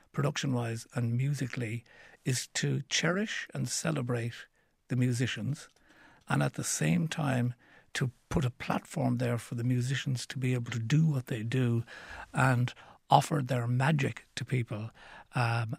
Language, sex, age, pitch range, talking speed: English, male, 60-79, 120-140 Hz, 145 wpm